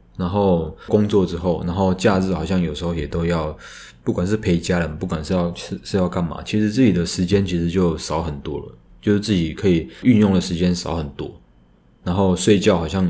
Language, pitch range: Chinese, 85-100 Hz